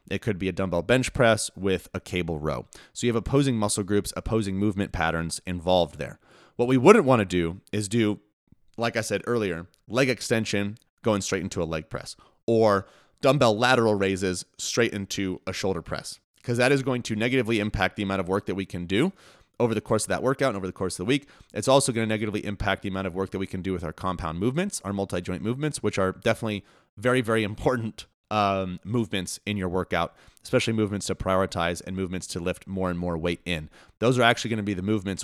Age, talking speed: 30-49, 220 wpm